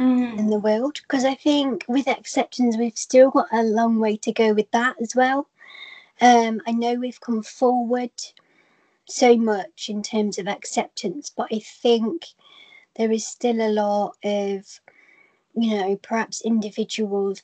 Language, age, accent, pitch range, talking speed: English, 30-49, British, 210-240 Hz, 155 wpm